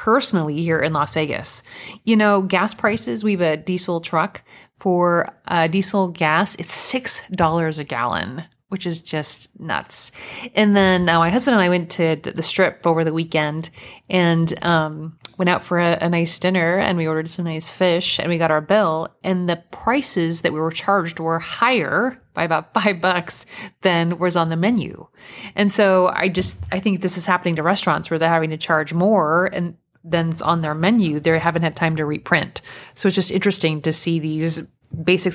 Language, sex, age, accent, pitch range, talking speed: English, female, 30-49, American, 160-190 Hz, 195 wpm